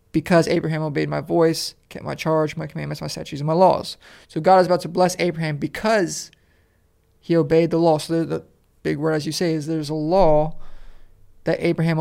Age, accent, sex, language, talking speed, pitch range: 20-39, American, male, English, 200 wpm, 150-170 Hz